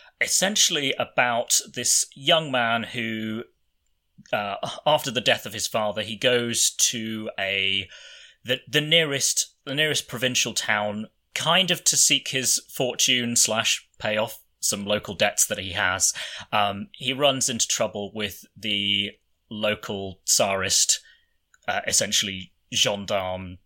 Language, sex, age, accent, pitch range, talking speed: English, male, 30-49, British, 105-130 Hz, 130 wpm